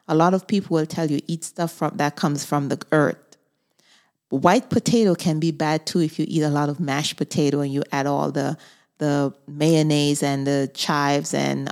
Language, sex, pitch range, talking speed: English, female, 145-175 Hz, 205 wpm